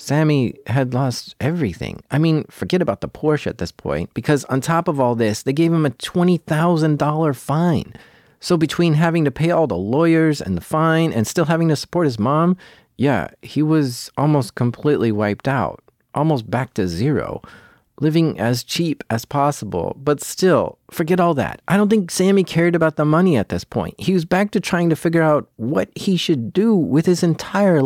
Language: English